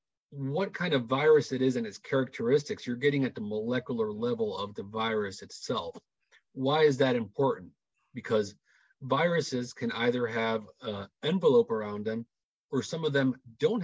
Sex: male